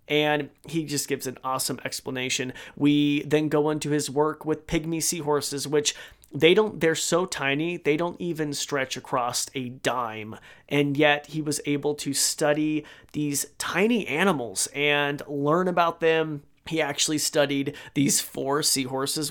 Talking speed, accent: 150 wpm, American